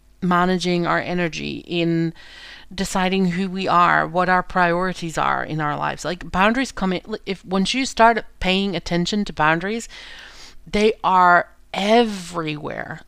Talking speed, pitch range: 140 wpm, 165-195 Hz